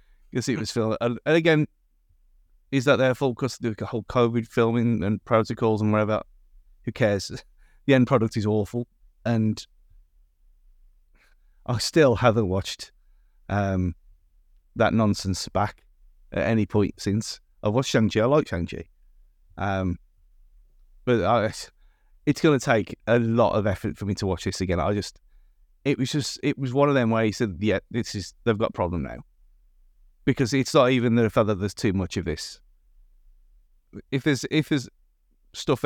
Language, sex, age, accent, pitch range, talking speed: English, male, 30-49, British, 95-125 Hz, 170 wpm